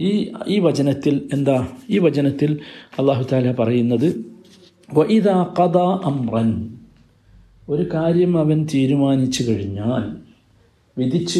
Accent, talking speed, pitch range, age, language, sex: native, 95 wpm, 130-180 Hz, 50-69, Malayalam, male